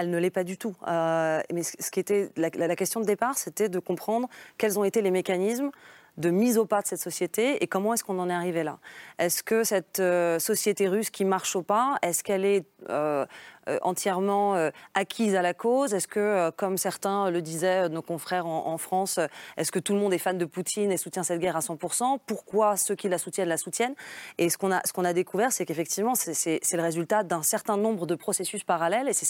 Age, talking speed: 20-39, 230 wpm